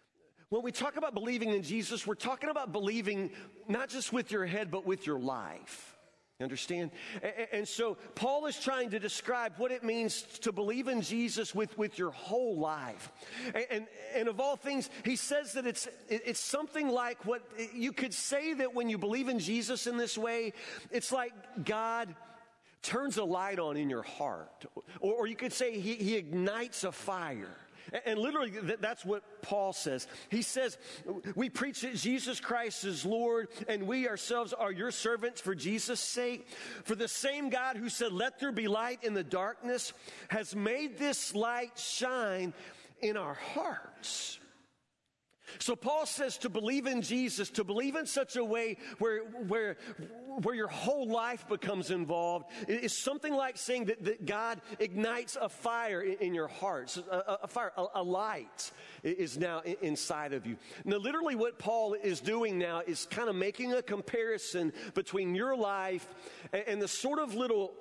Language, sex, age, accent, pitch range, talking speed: English, male, 40-59, American, 195-245 Hz, 175 wpm